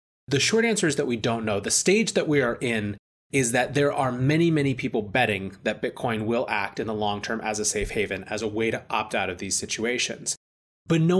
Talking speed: 240 wpm